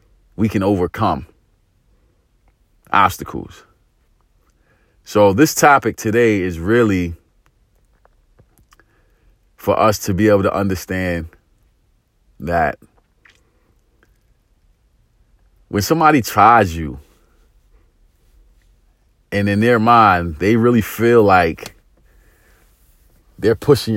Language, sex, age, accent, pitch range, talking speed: English, male, 30-49, American, 95-140 Hz, 80 wpm